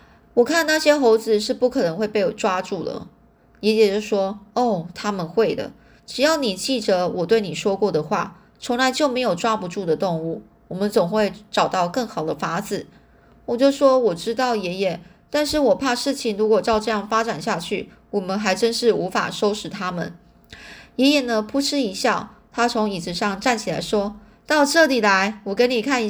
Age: 20-39